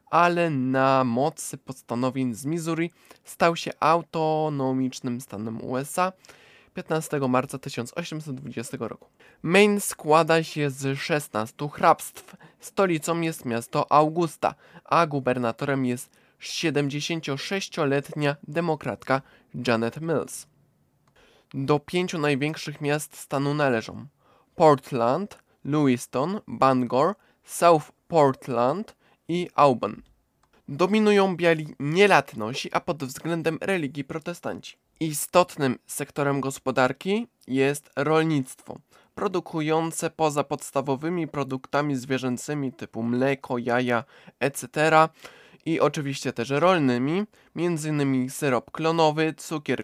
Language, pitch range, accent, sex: Polish, 130-165 Hz, native, male